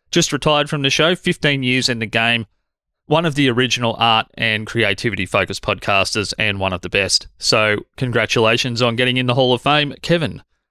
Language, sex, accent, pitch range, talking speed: English, male, Australian, 110-140 Hz, 185 wpm